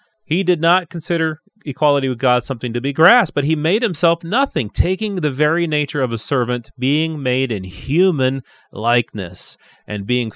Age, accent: 30-49, American